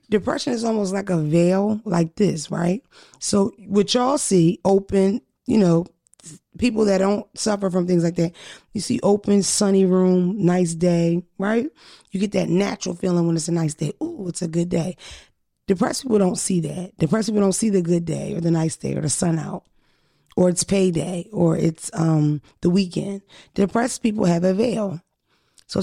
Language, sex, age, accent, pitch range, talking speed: English, female, 20-39, American, 170-205 Hz, 190 wpm